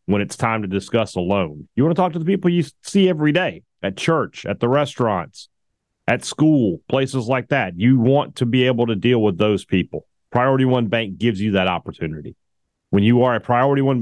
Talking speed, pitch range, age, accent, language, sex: 220 wpm, 105-135 Hz, 40-59, American, English, male